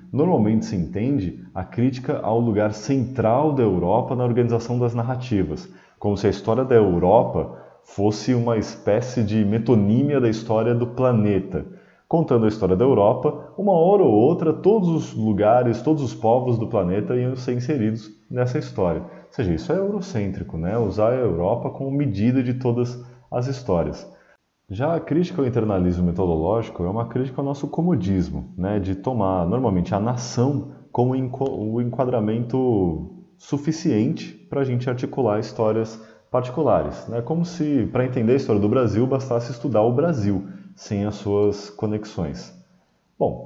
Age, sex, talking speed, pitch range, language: 20-39, male, 155 wpm, 105-130 Hz, Portuguese